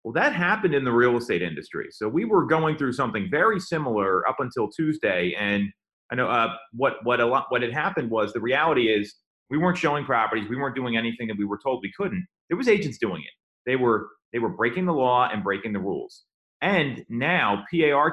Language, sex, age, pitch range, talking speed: English, male, 30-49, 115-150 Hz, 220 wpm